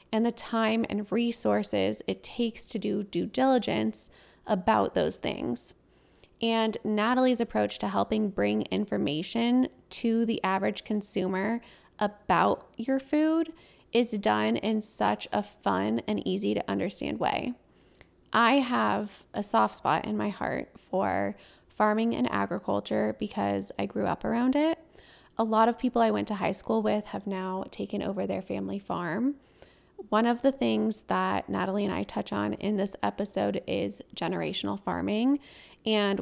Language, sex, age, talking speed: English, female, 20-39, 150 wpm